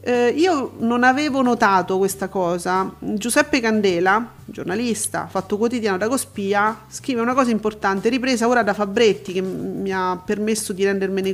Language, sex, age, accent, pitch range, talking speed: Italian, female, 40-59, native, 190-240 Hz, 150 wpm